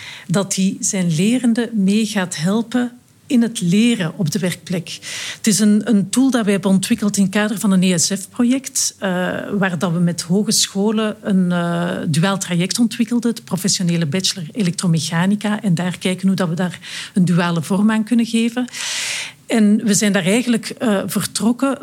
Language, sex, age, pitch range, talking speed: Dutch, female, 50-69, 180-225 Hz, 175 wpm